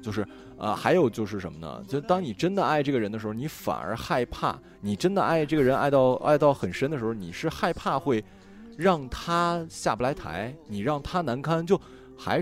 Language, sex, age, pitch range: Chinese, male, 20-39, 115-190 Hz